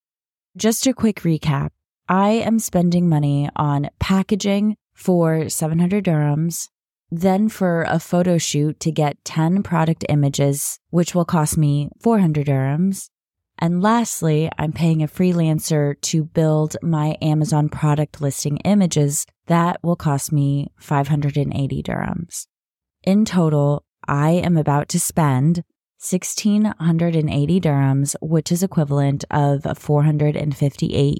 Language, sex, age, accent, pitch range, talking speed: English, female, 20-39, American, 150-175 Hz, 135 wpm